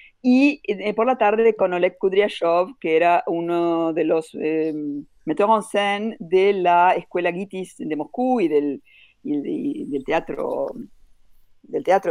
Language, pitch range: Spanish, 165-240 Hz